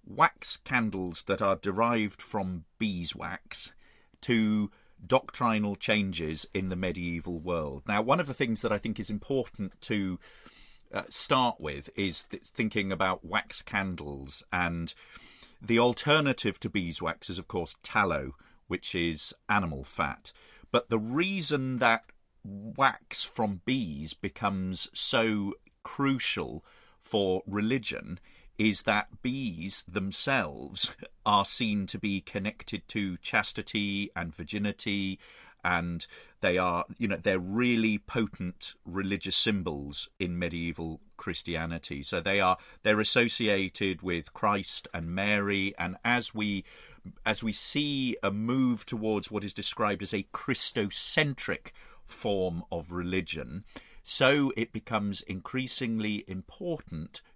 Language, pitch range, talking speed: English, 90-110 Hz, 125 wpm